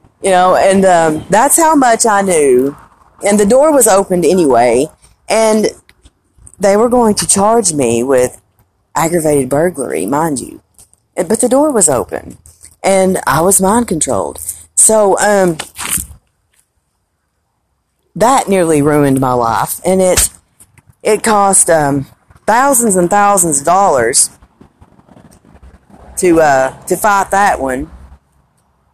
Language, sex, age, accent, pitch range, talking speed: English, female, 40-59, American, 125-200 Hz, 120 wpm